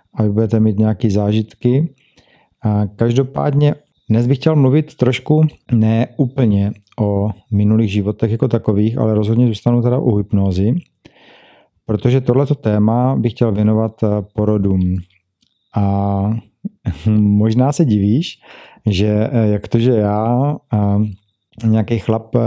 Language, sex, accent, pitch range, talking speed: Czech, male, native, 105-125 Hz, 105 wpm